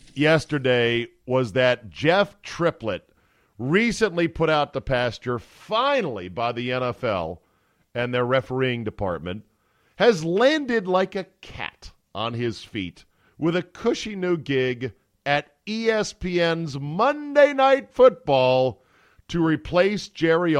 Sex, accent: male, American